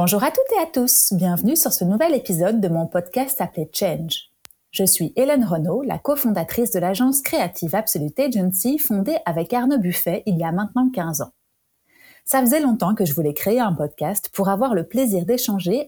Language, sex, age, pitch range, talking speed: French, female, 30-49, 180-245 Hz, 195 wpm